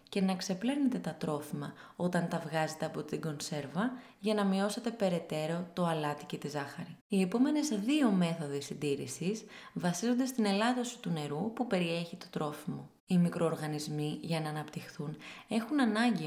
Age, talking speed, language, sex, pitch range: 20-39, 150 wpm, Greek, female, 160-220 Hz